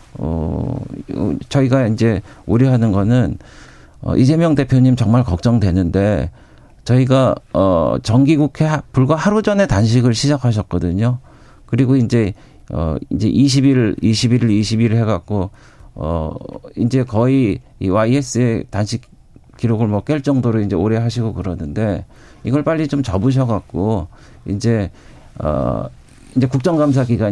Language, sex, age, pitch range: Korean, male, 50-69, 100-135 Hz